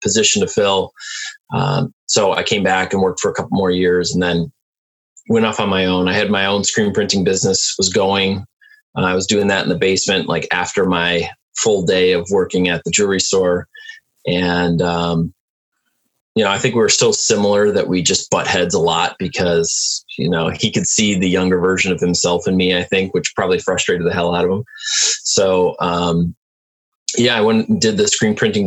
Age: 20-39